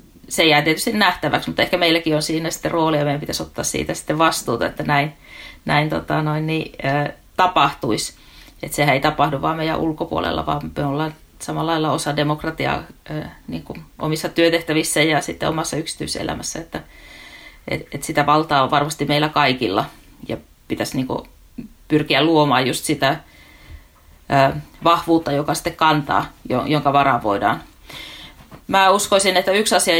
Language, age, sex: Finnish, 30-49, female